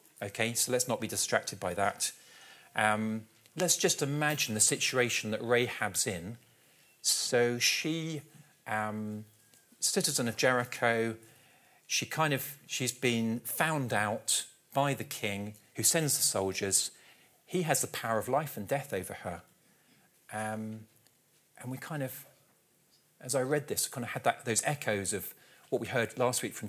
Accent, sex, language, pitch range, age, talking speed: British, male, English, 100-130 Hz, 40-59, 155 wpm